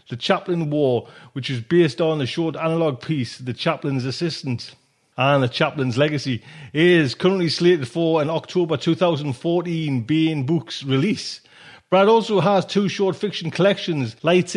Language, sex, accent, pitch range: English, male, British, 140-175 Hz